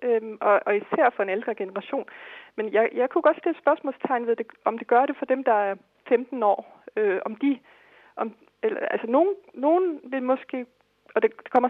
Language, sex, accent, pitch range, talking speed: Danish, female, native, 205-265 Hz, 205 wpm